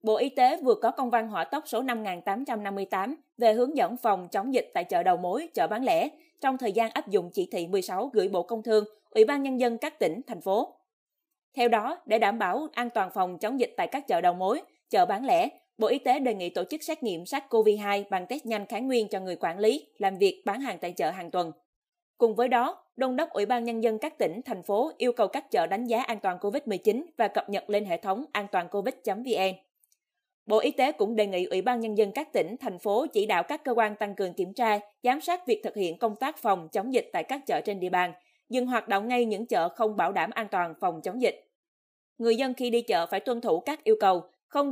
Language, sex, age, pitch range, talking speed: Vietnamese, female, 20-39, 200-270 Hz, 245 wpm